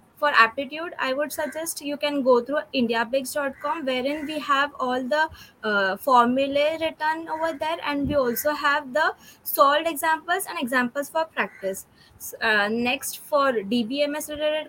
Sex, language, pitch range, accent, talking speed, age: female, Hindi, 245-310 Hz, native, 150 wpm, 20-39